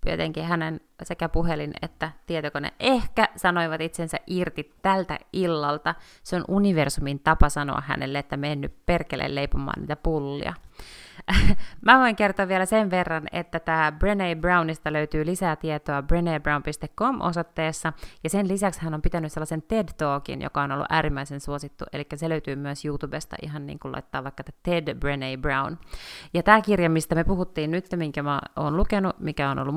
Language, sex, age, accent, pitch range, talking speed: Finnish, female, 30-49, native, 145-180 Hz, 160 wpm